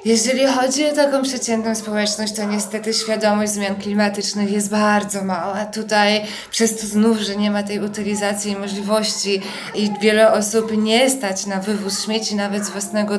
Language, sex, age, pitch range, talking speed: Polish, female, 20-39, 205-225 Hz, 165 wpm